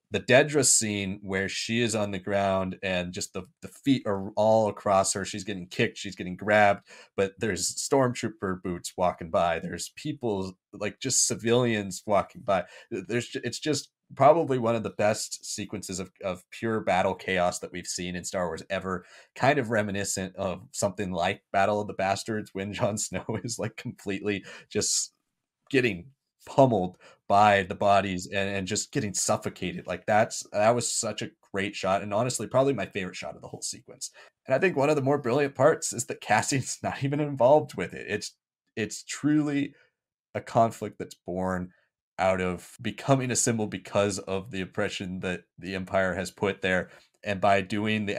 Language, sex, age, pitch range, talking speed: English, male, 30-49, 95-115 Hz, 180 wpm